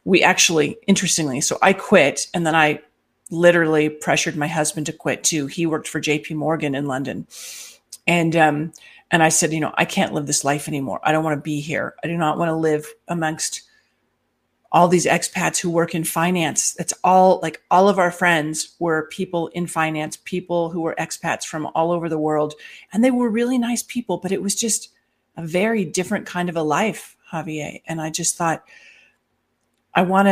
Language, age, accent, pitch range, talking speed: English, 40-59, American, 160-180 Hz, 200 wpm